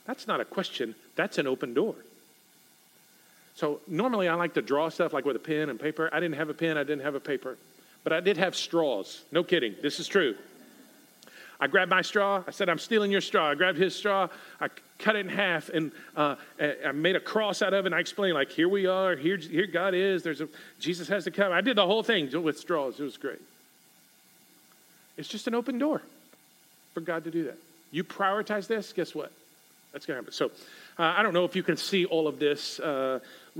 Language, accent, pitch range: English, American, 160-195 Hz